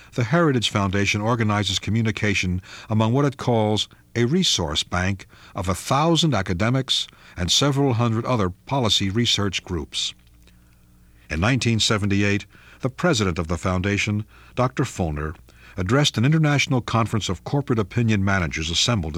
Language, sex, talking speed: English, male, 130 wpm